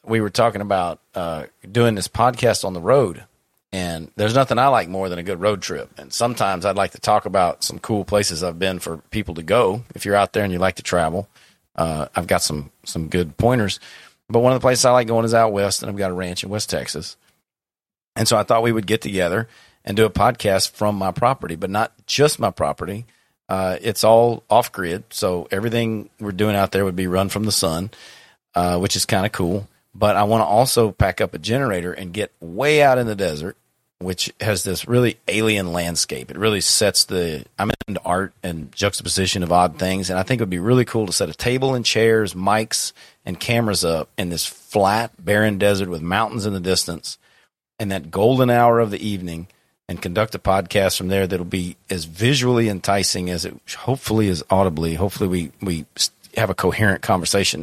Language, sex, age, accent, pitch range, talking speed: English, male, 40-59, American, 90-110 Hz, 215 wpm